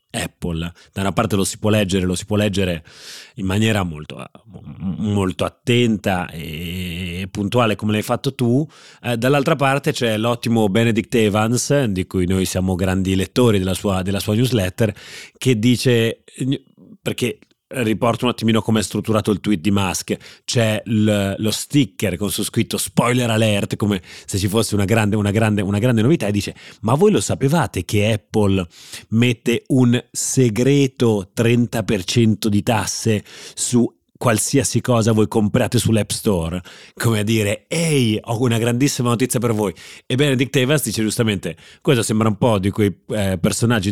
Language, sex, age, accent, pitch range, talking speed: Italian, male, 30-49, native, 100-120 Hz, 155 wpm